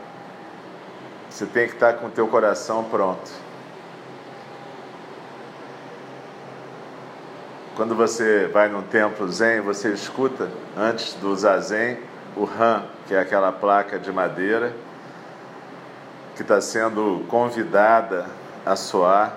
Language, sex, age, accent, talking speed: Portuguese, male, 50-69, Brazilian, 105 wpm